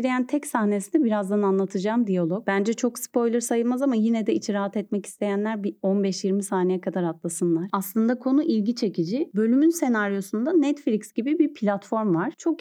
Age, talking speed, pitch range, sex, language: 30-49, 160 wpm, 185-250 Hz, female, Turkish